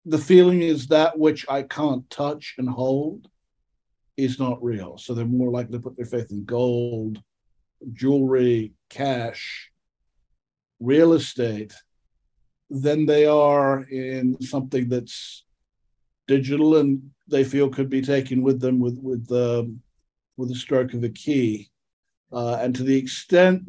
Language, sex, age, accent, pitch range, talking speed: English, male, 50-69, American, 120-150 Hz, 140 wpm